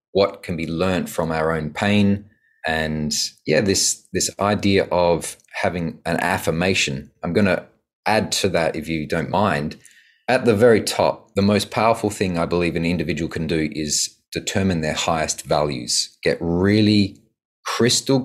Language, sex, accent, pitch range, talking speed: English, male, Australian, 80-95 Hz, 160 wpm